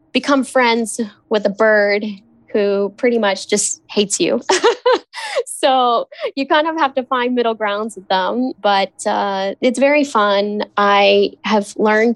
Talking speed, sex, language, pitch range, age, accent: 150 wpm, female, English, 195-235 Hz, 10-29, American